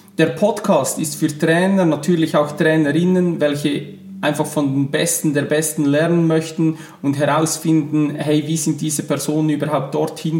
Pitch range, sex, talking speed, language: 150-170 Hz, male, 150 wpm, German